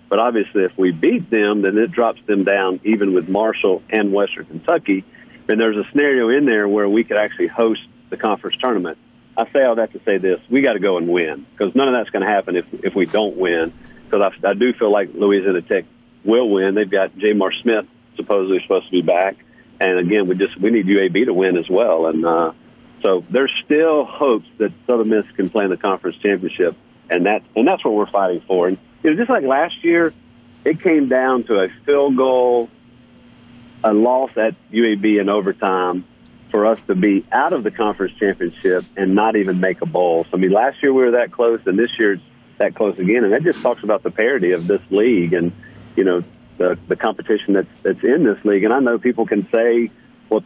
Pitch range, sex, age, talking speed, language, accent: 95-125 Hz, male, 50-69, 225 wpm, English, American